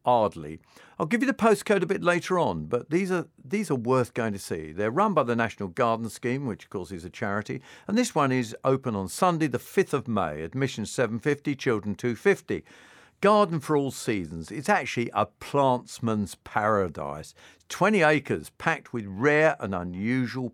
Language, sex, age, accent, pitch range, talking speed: English, male, 50-69, British, 115-170 Hz, 185 wpm